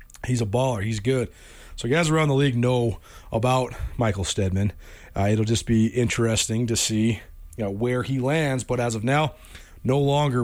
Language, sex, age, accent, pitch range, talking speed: English, male, 30-49, American, 105-135 Hz, 170 wpm